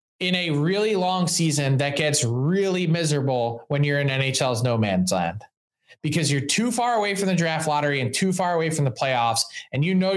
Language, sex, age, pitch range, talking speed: English, male, 20-39, 145-195 Hz, 205 wpm